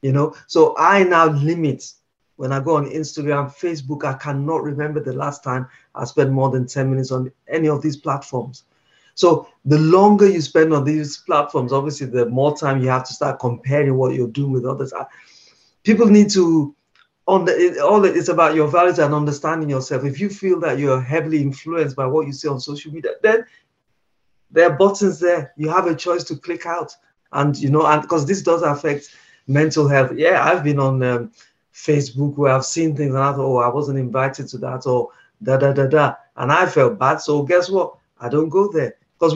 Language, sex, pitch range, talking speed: English, male, 135-160 Hz, 210 wpm